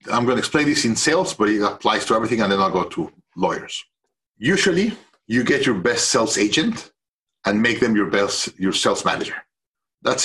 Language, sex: English, male